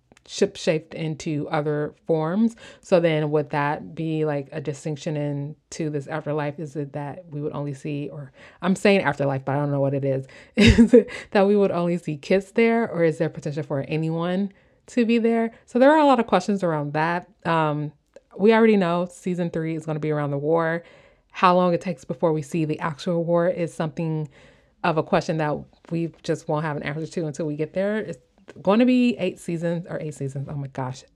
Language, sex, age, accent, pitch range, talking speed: English, female, 20-39, American, 150-180 Hz, 220 wpm